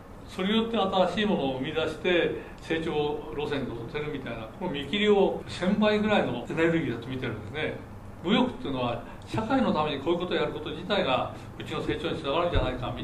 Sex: male